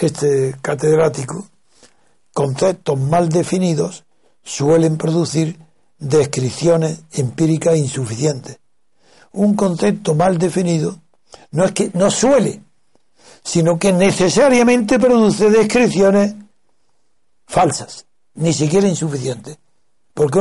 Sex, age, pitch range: male, 60-79, 160-205 Hz